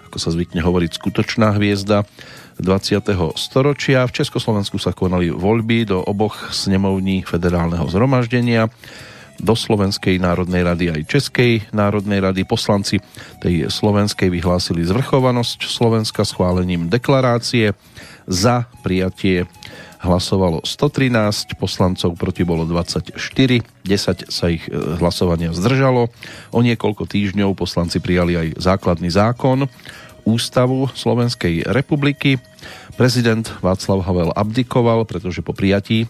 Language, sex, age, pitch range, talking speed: Slovak, male, 40-59, 90-115 Hz, 110 wpm